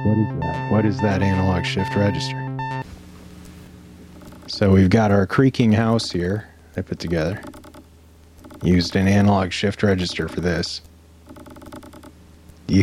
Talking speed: 125 wpm